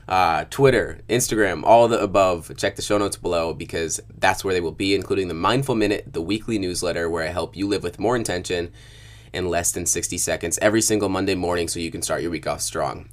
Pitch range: 90-110 Hz